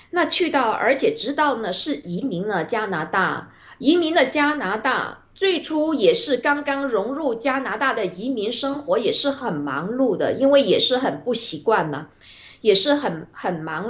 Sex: female